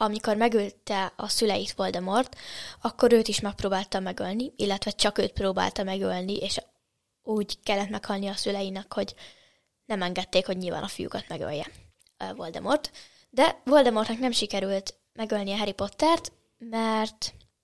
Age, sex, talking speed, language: 10-29, female, 135 wpm, Hungarian